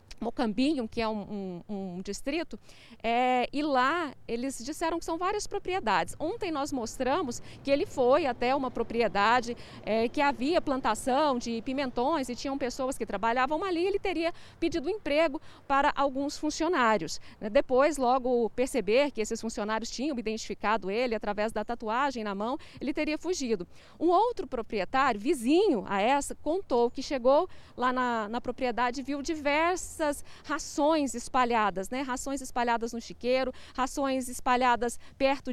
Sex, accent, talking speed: female, Brazilian, 145 wpm